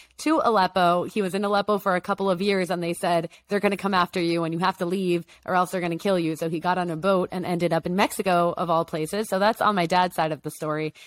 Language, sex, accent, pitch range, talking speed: English, female, American, 165-185 Hz, 300 wpm